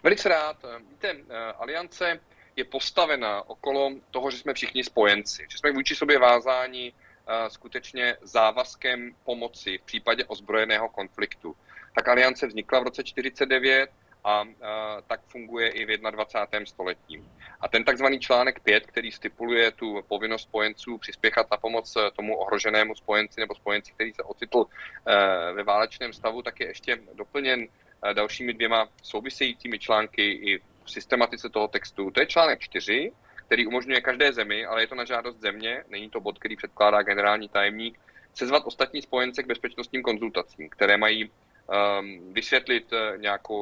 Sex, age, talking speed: male, 30-49, 150 wpm